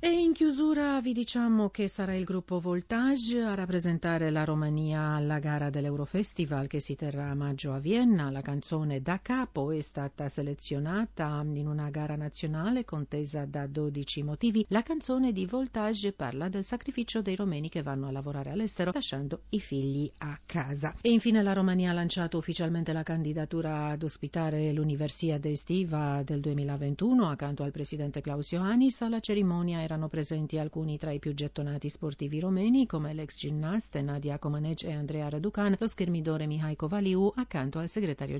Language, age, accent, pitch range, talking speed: Italian, 50-69, native, 145-195 Hz, 165 wpm